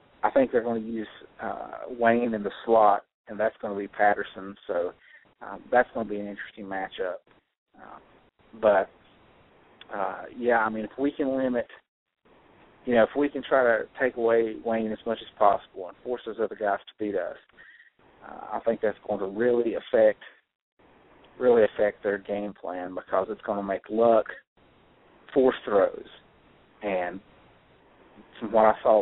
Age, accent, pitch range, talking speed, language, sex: 40-59, American, 105-125 Hz, 170 wpm, English, male